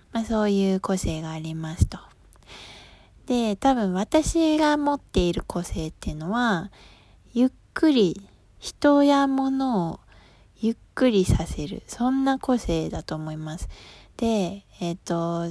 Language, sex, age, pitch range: Japanese, female, 20-39, 175-245 Hz